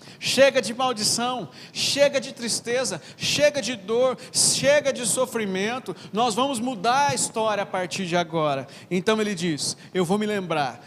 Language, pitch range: Portuguese, 185-255 Hz